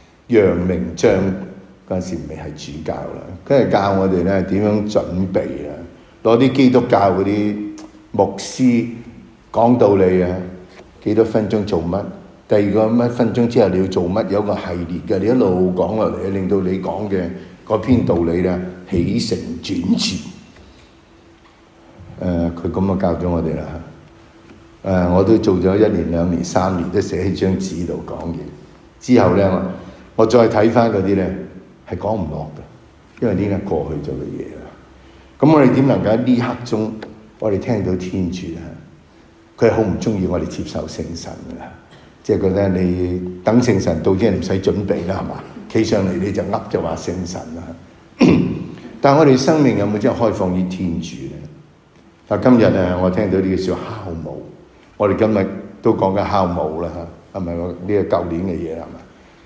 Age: 60-79